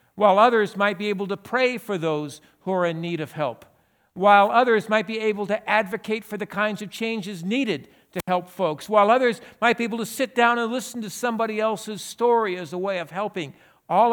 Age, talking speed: 60-79, 215 wpm